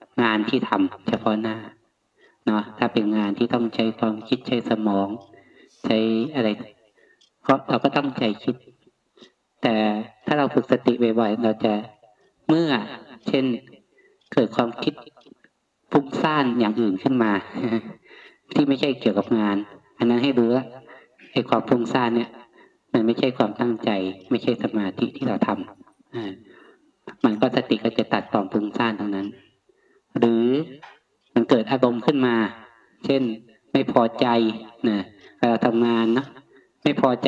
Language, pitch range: Thai, 110-130 Hz